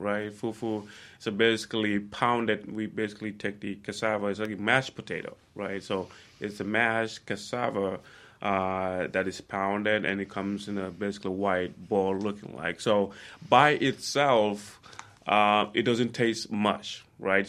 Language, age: English, 20-39